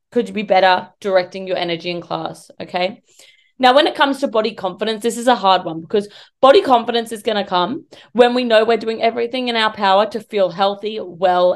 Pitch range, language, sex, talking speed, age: 175-220 Hz, English, female, 220 wpm, 30-49